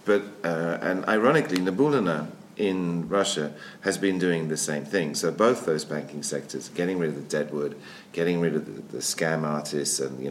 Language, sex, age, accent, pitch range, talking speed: English, male, 50-69, British, 75-95 Hz, 190 wpm